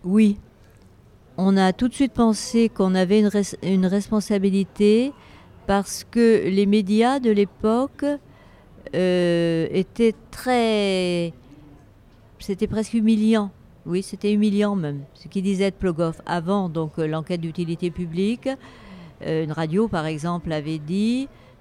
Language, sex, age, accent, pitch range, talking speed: French, female, 50-69, French, 165-205 Hz, 120 wpm